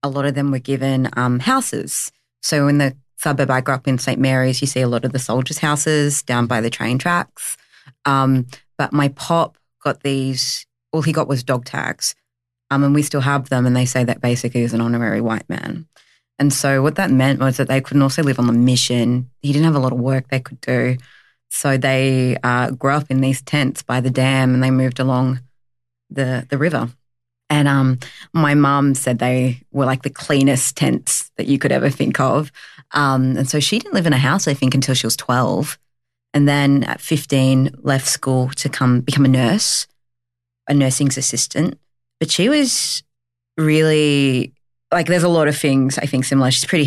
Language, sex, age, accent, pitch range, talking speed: English, female, 20-39, Australian, 125-145 Hz, 210 wpm